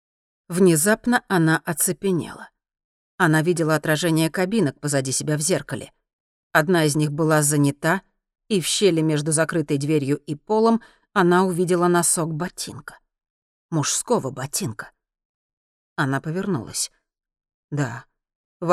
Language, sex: Russian, female